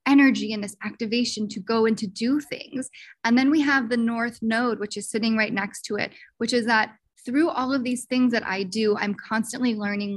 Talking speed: 225 wpm